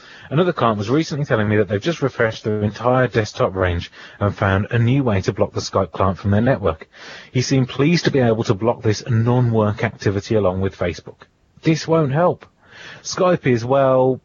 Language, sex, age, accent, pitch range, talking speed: English, male, 30-49, British, 105-135 Hz, 200 wpm